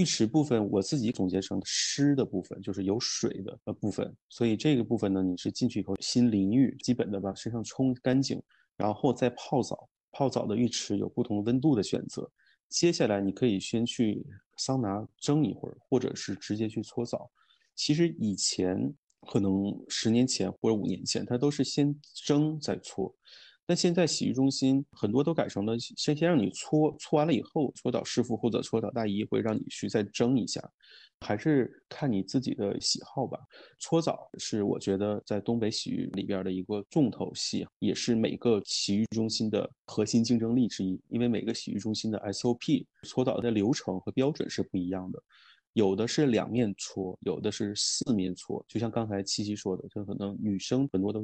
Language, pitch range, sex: Chinese, 100-125 Hz, male